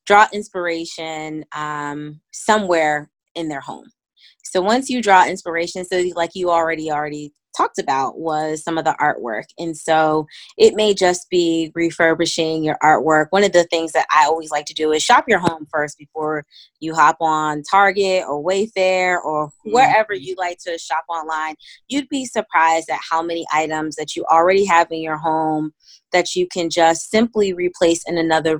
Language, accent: English, American